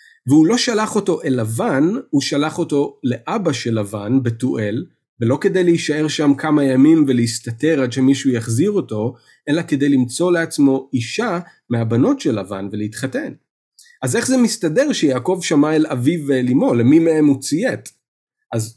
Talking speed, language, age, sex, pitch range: 155 wpm, Hebrew, 40-59, male, 125-170 Hz